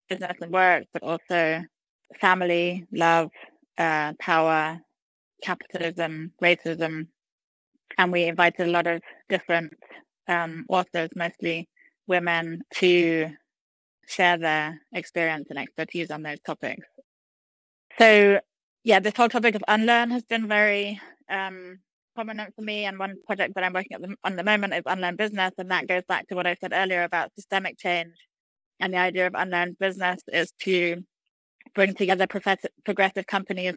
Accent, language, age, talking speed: British, English, 20-39, 145 wpm